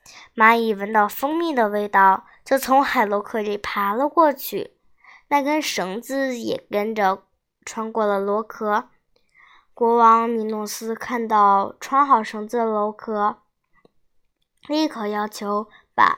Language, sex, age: Chinese, male, 10-29